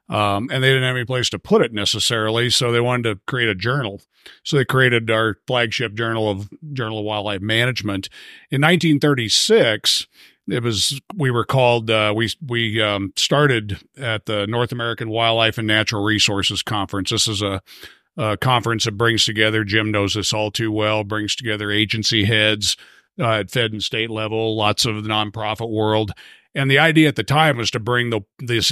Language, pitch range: English, 105-130 Hz